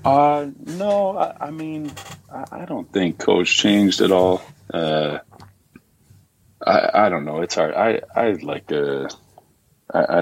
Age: 40-59